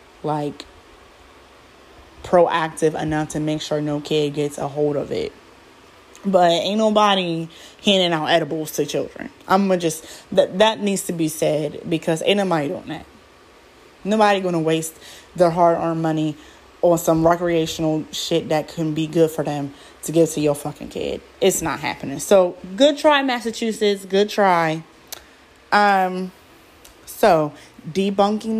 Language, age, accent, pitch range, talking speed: English, 20-39, American, 155-210 Hz, 145 wpm